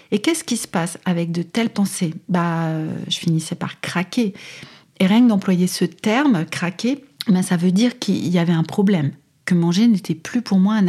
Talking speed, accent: 200 wpm, French